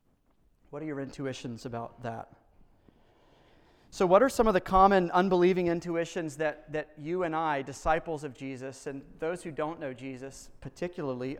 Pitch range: 140-170 Hz